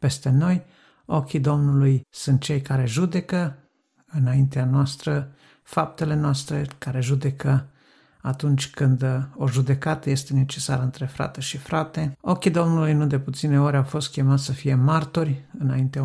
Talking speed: 140 wpm